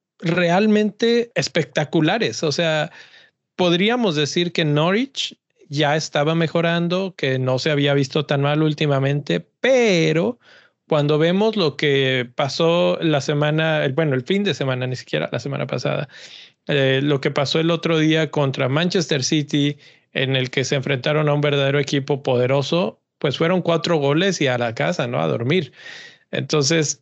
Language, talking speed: Spanish, 155 wpm